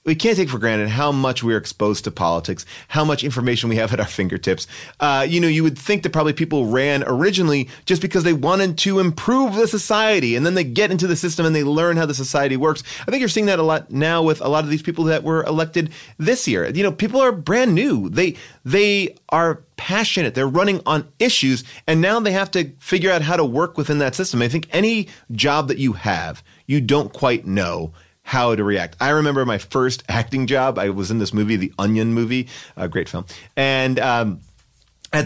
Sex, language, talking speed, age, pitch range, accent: male, English, 225 wpm, 30-49, 120-175 Hz, American